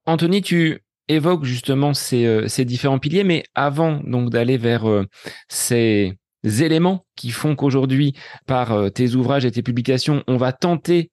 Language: French